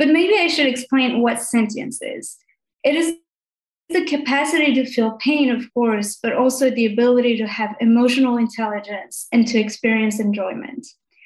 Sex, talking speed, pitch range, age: female, 155 wpm, 220-265 Hz, 20-39